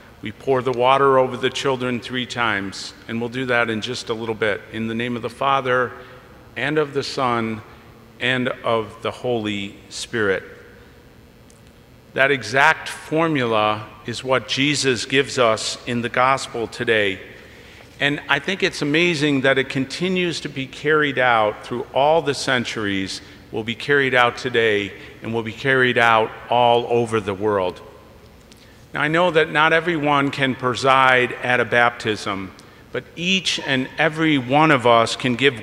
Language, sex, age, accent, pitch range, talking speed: English, male, 50-69, American, 115-145 Hz, 160 wpm